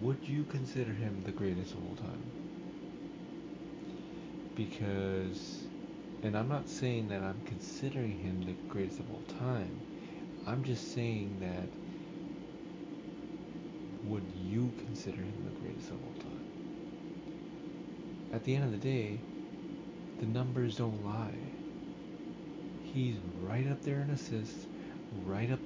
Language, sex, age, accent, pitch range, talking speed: English, male, 40-59, American, 105-135 Hz, 125 wpm